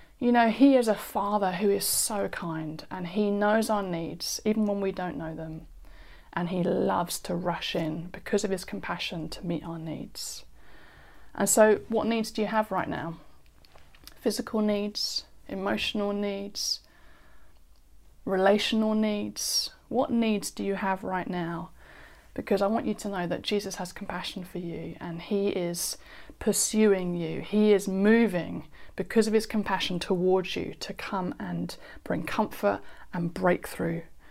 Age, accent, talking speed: 30-49, British, 155 wpm